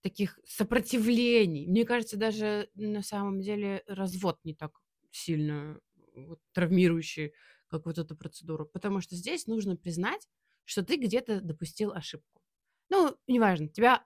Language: Russian